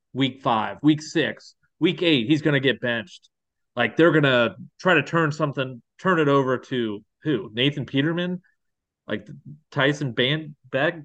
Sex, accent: male, American